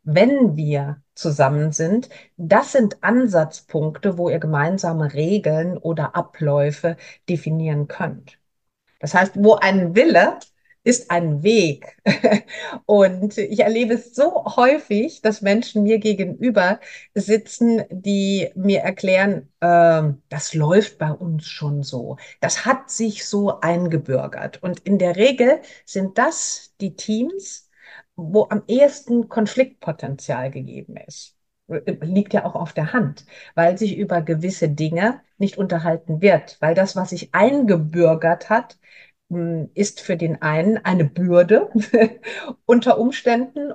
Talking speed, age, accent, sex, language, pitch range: 125 wpm, 50-69, German, female, German, 165-220 Hz